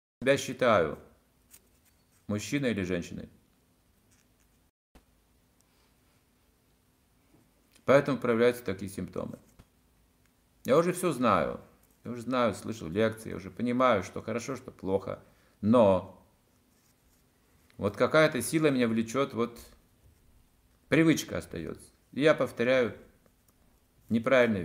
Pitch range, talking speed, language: 90-135 Hz, 90 wpm, Russian